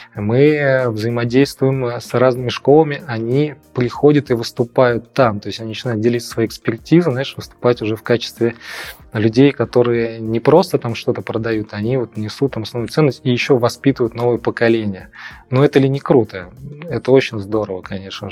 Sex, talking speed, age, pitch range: male, 160 wpm, 20-39, 110-135 Hz